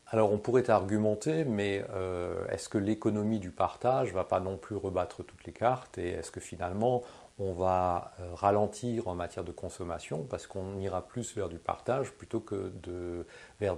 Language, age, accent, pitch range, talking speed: French, 40-59, French, 90-110 Hz, 185 wpm